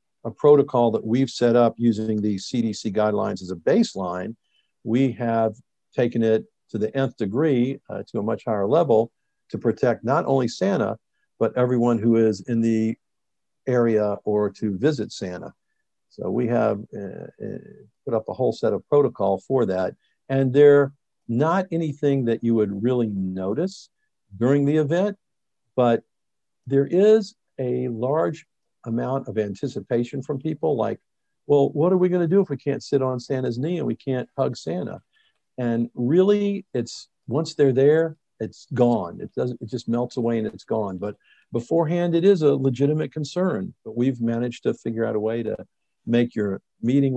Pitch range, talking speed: 110-145 Hz, 170 wpm